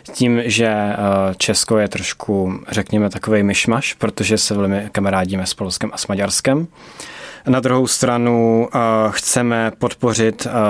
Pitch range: 105-120 Hz